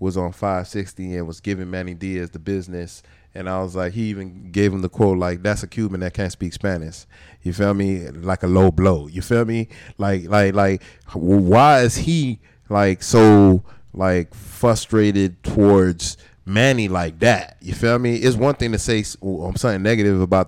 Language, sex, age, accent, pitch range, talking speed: English, male, 20-39, American, 90-110 Hz, 185 wpm